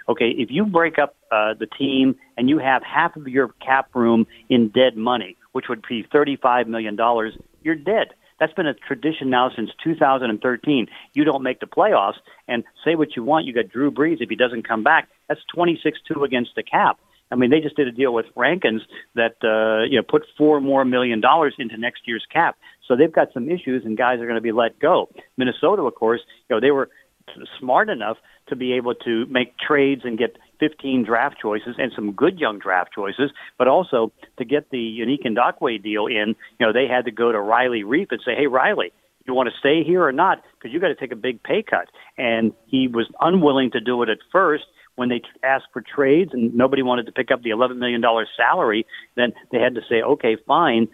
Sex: male